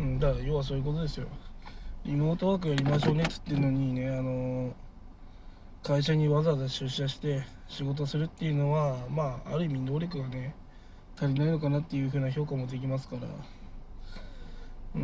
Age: 20-39